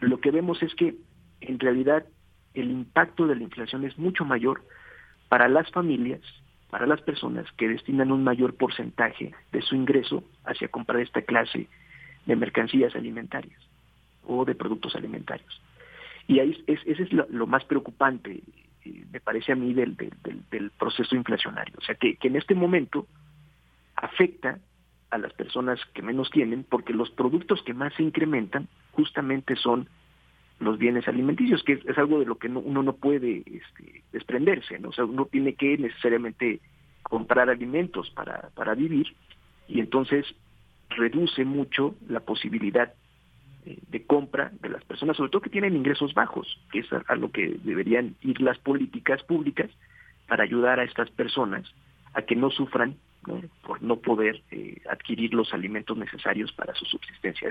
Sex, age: male, 50-69